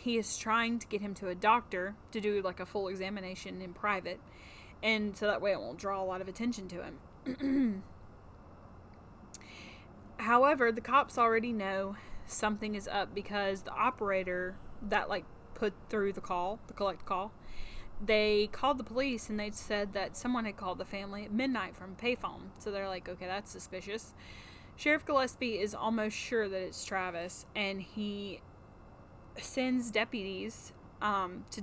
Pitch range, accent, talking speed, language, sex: 180-225 Hz, American, 165 wpm, English, female